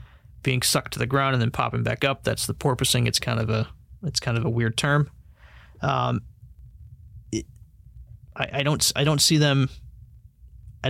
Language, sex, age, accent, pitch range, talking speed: English, male, 30-49, American, 120-145 Hz, 160 wpm